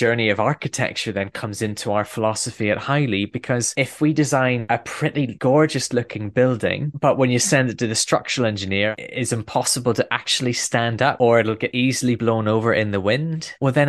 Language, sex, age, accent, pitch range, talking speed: English, male, 20-39, British, 105-130 Hz, 195 wpm